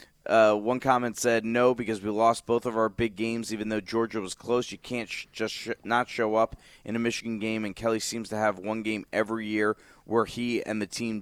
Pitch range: 105-120 Hz